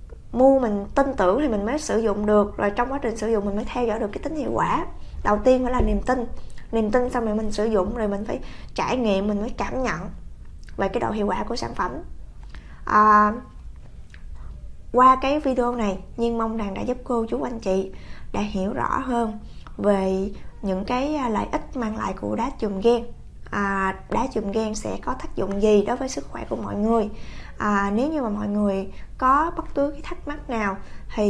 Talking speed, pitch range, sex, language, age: 220 wpm, 205-250 Hz, female, Vietnamese, 20-39